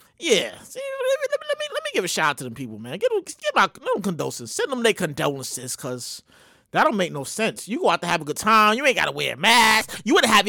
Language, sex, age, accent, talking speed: English, male, 30-49, American, 285 wpm